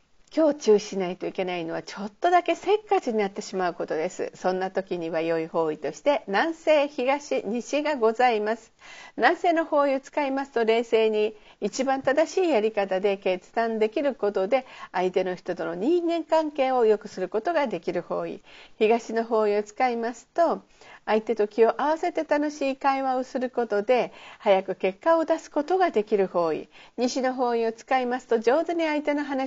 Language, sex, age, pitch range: Japanese, female, 50-69, 205-290 Hz